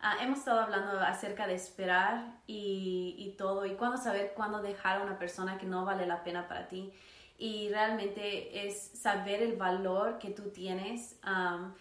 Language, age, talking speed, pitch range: English, 20-39, 180 wpm, 190-220 Hz